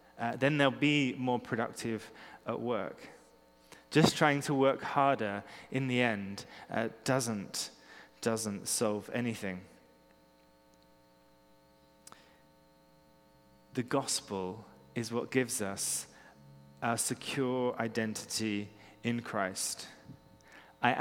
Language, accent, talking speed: English, British, 95 wpm